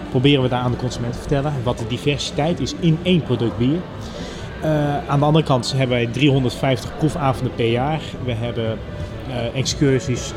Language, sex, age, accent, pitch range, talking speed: Dutch, male, 30-49, Dutch, 120-155 Hz, 180 wpm